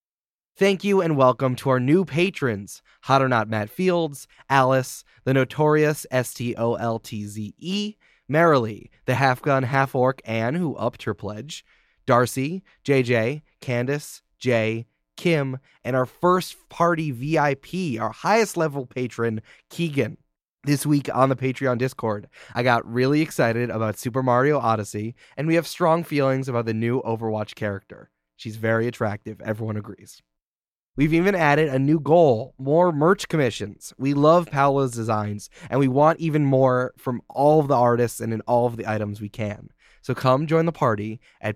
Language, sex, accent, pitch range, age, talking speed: English, male, American, 110-145 Hz, 20-39, 155 wpm